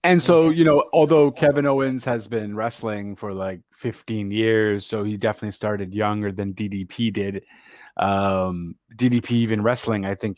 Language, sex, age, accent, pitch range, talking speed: English, male, 30-49, American, 105-130 Hz, 160 wpm